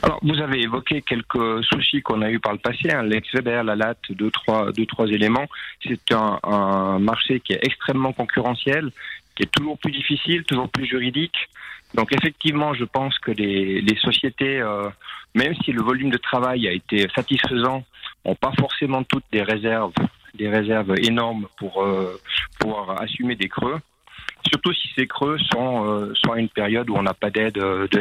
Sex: male